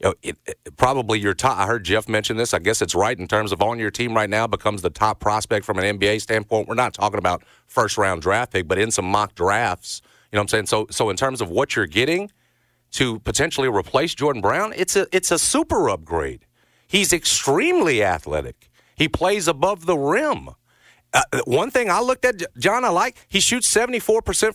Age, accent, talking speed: 40-59, American, 220 wpm